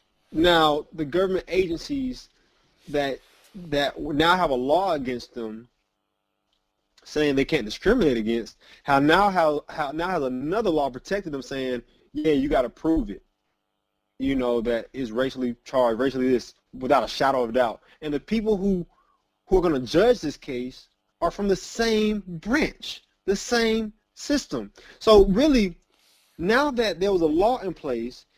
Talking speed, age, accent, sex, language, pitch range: 160 wpm, 30-49, American, male, English, 115-195 Hz